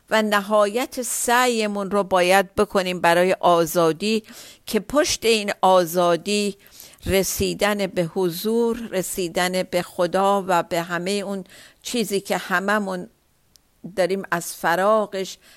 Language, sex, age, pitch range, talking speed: Persian, female, 50-69, 180-230 Hz, 110 wpm